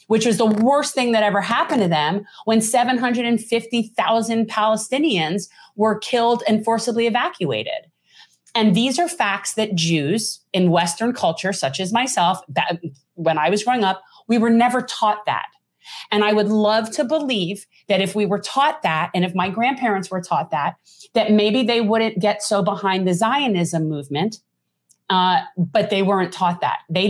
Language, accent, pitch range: English, American, 185-240 Hz